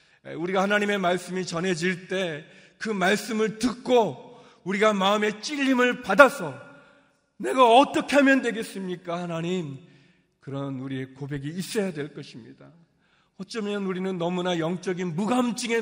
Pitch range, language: 155-240 Hz, Korean